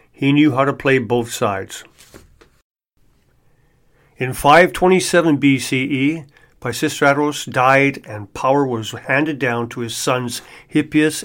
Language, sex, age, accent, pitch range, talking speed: English, male, 50-69, American, 130-160 Hz, 110 wpm